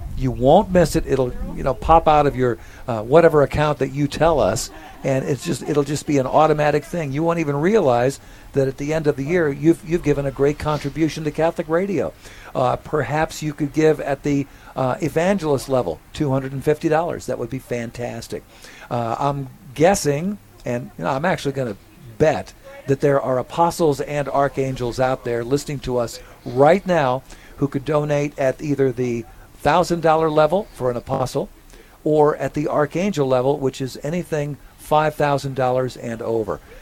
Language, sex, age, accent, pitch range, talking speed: English, male, 50-69, American, 130-155 Hz, 185 wpm